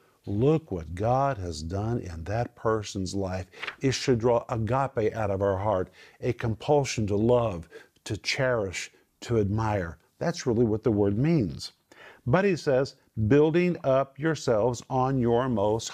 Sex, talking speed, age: male, 150 wpm, 50-69